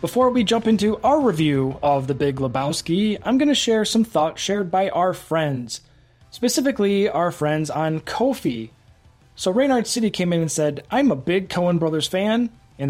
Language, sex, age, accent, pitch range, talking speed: English, male, 20-39, American, 145-220 Hz, 180 wpm